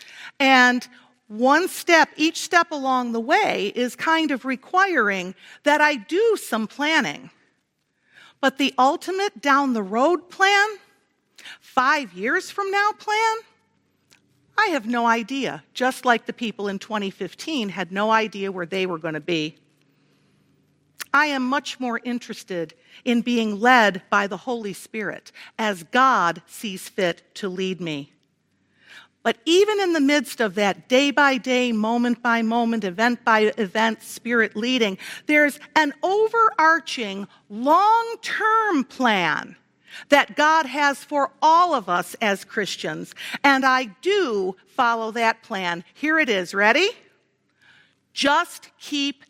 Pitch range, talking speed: 205-300 Hz, 135 wpm